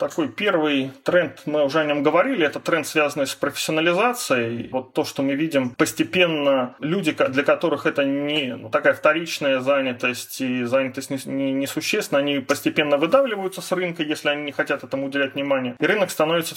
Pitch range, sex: 145-185 Hz, male